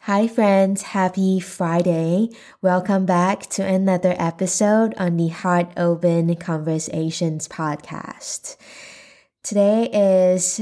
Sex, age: female, 20-39